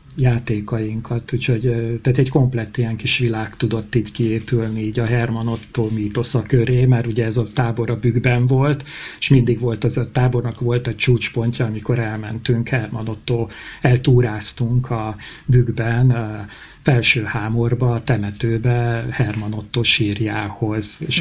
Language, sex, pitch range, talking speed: Hungarian, male, 115-130 Hz, 135 wpm